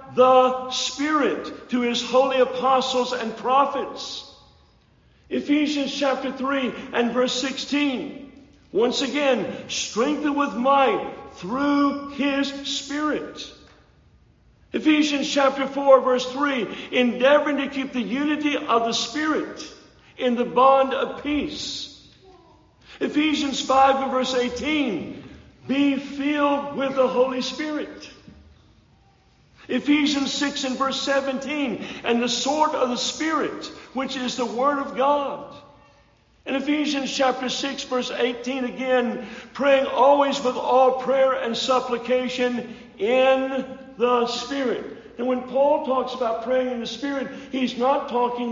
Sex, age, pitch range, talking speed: male, 50-69, 250-280 Hz, 120 wpm